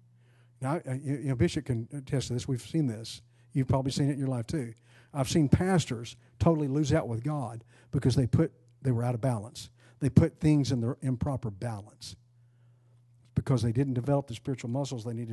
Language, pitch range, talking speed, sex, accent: English, 120-135 Hz, 200 wpm, male, American